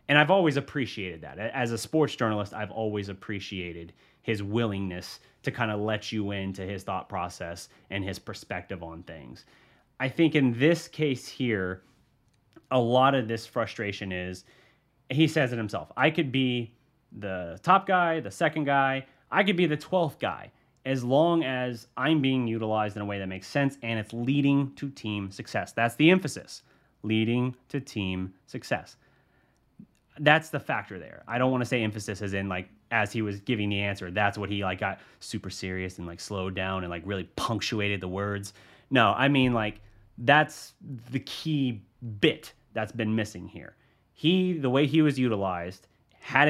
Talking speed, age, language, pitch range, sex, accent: 180 wpm, 30-49, English, 100-135 Hz, male, American